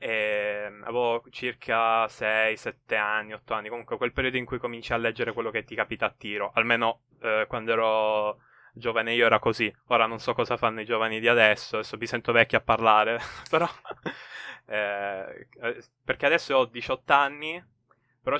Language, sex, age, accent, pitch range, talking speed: Italian, male, 20-39, native, 110-125 Hz, 175 wpm